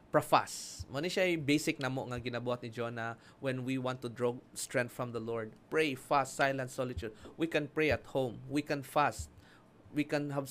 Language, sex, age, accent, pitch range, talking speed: English, male, 20-39, Filipino, 125-145 Hz, 190 wpm